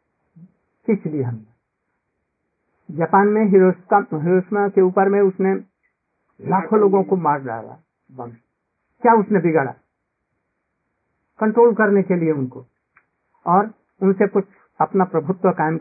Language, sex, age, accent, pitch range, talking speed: Hindi, male, 60-79, native, 155-205 Hz, 105 wpm